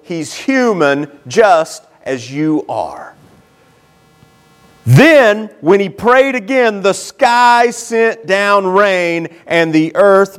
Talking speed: 110 wpm